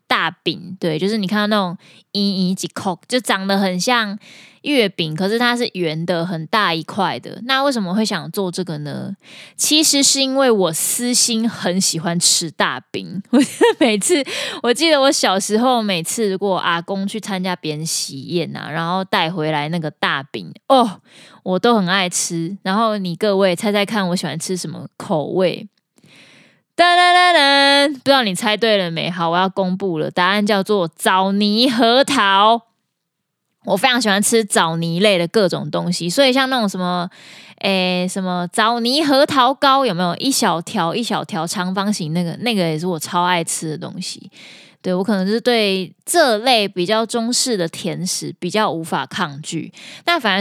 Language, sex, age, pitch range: Chinese, female, 20-39, 175-230 Hz